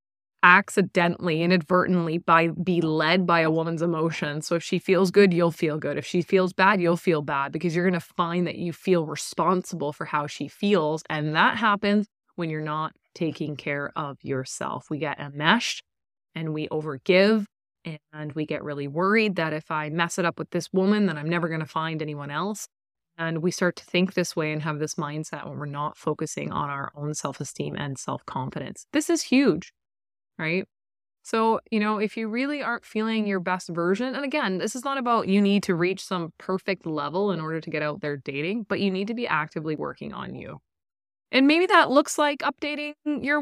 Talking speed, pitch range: 200 wpm, 155-210 Hz